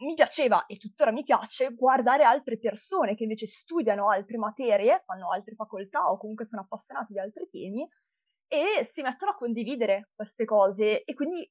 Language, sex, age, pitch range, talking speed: Italian, female, 20-39, 205-255 Hz, 170 wpm